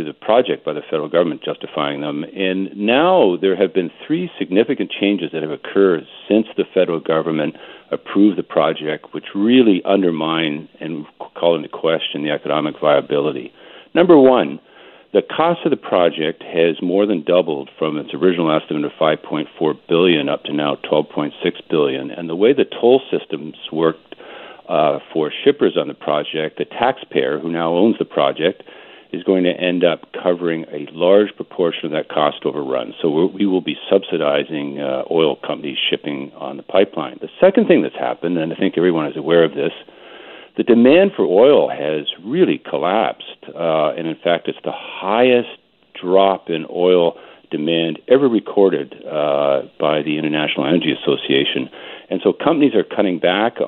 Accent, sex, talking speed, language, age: American, male, 165 wpm, English, 50-69